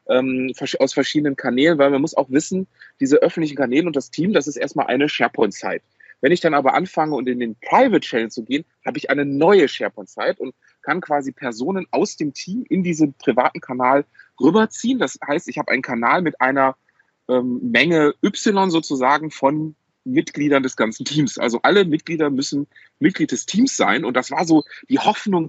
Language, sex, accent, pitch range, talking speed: German, male, German, 130-185 Hz, 190 wpm